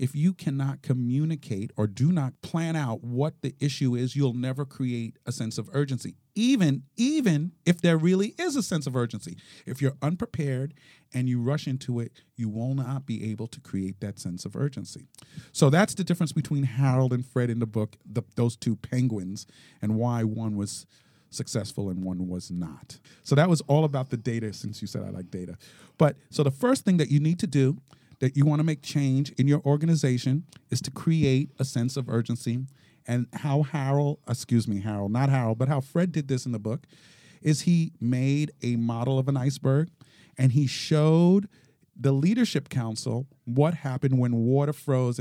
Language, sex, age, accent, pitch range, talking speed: English, male, 40-59, American, 120-150 Hz, 195 wpm